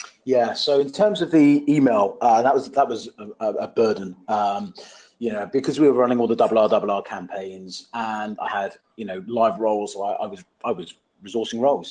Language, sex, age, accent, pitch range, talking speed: English, male, 30-49, British, 105-140 Hz, 220 wpm